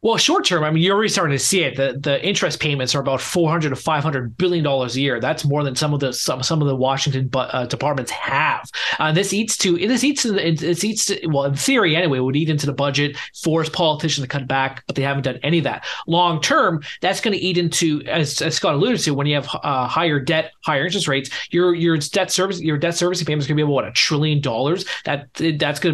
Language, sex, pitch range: English, male, 140-170 Hz